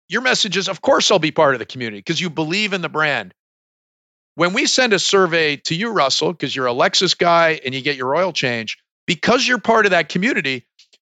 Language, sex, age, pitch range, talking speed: English, male, 50-69, 140-195 Hz, 230 wpm